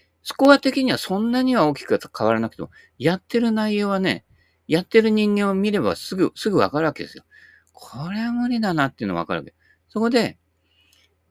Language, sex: Japanese, male